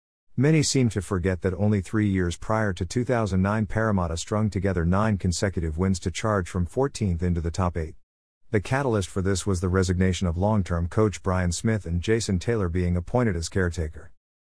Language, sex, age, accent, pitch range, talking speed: English, male, 50-69, American, 90-110 Hz, 180 wpm